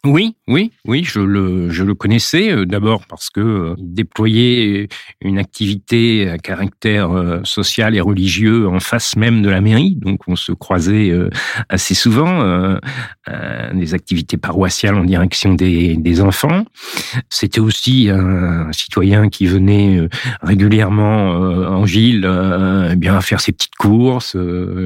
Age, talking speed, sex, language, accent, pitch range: 50-69, 155 wpm, male, French, French, 90-115 Hz